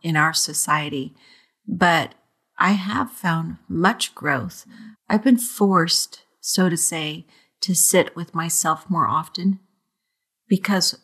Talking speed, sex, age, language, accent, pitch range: 120 wpm, female, 40-59, English, American, 170-195 Hz